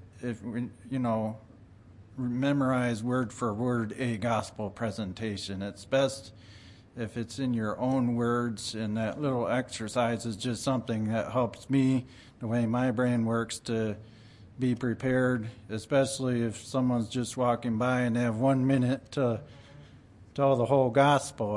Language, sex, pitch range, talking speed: English, male, 105-125 Hz, 145 wpm